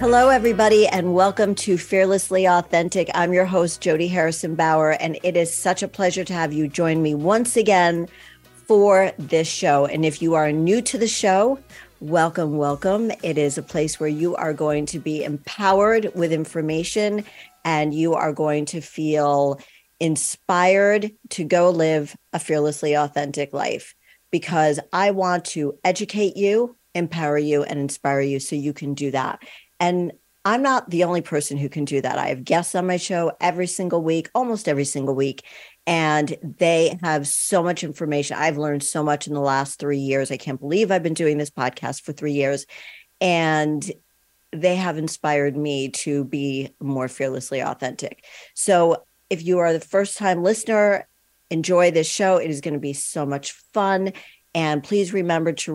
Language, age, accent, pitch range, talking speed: English, 50-69, American, 150-185 Hz, 175 wpm